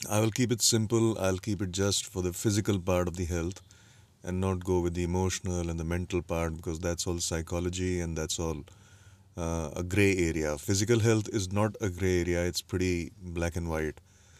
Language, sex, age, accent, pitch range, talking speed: English, male, 30-49, Indian, 90-100 Hz, 205 wpm